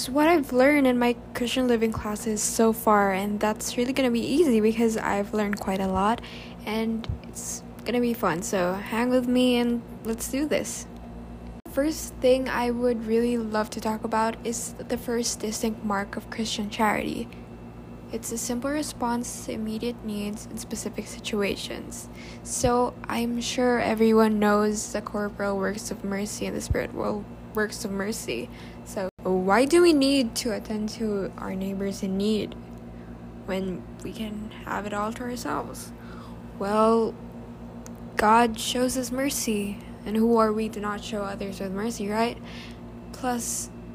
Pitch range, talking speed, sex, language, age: 195-235 Hz, 160 wpm, female, English, 10-29